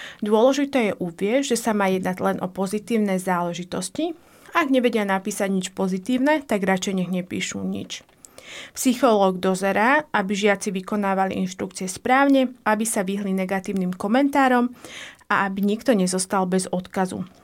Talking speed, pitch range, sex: 135 wpm, 185-230 Hz, female